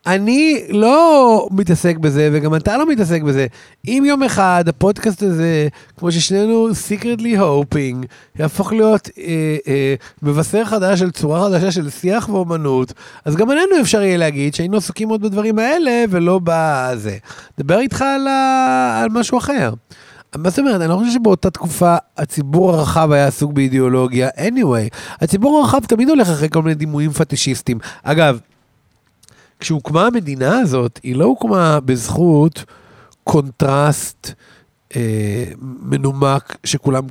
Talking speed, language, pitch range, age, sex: 135 wpm, Hebrew, 130-195 Hz, 30-49, male